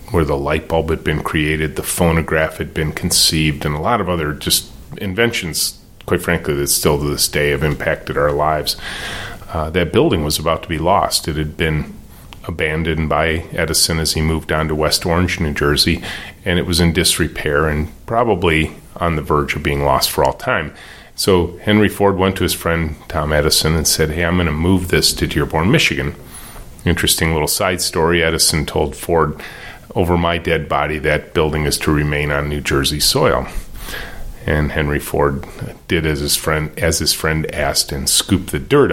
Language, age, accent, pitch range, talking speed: English, 30-49, American, 75-85 Hz, 190 wpm